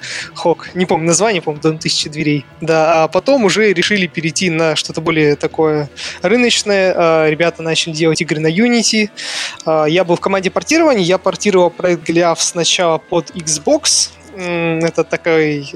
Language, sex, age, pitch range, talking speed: Russian, male, 20-39, 160-185 Hz, 155 wpm